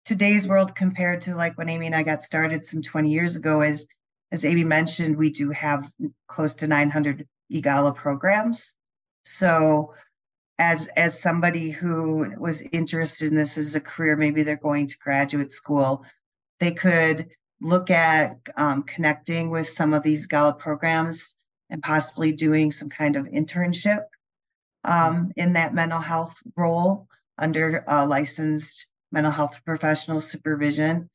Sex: female